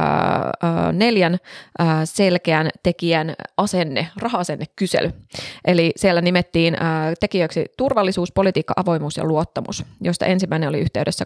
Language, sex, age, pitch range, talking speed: Finnish, female, 20-39, 160-195 Hz, 100 wpm